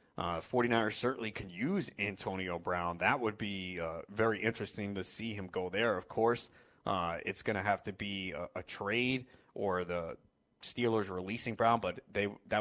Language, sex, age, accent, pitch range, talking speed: English, male, 30-49, American, 100-120 Hz, 180 wpm